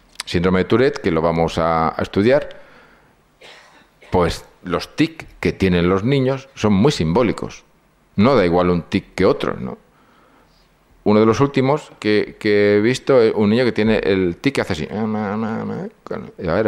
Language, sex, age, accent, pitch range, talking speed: Spanish, male, 40-59, Spanish, 90-120 Hz, 165 wpm